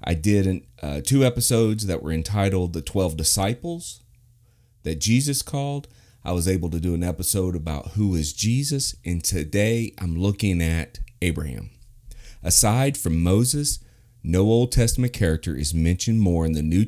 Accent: American